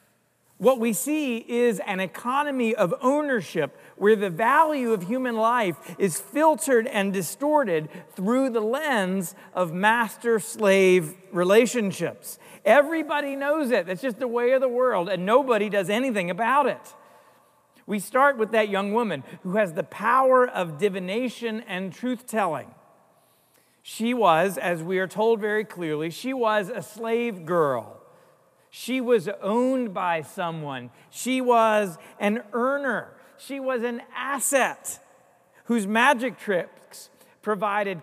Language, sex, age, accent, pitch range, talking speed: English, male, 50-69, American, 190-250 Hz, 135 wpm